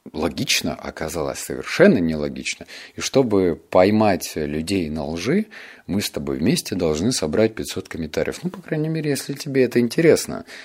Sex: male